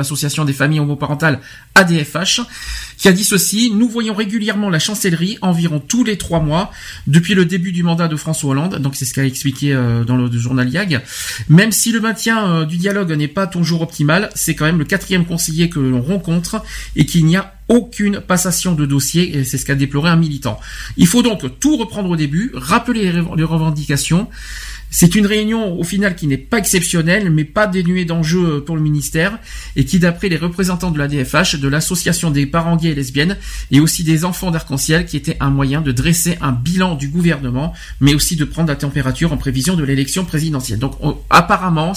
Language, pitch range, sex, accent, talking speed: French, 140-180 Hz, male, French, 205 wpm